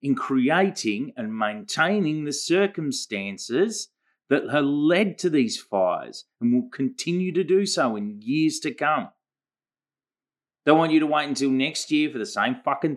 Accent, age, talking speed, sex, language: Australian, 30-49, 155 wpm, male, English